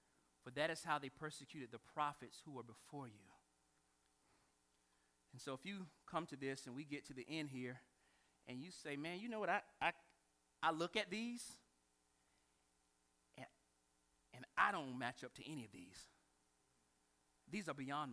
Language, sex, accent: English, male, American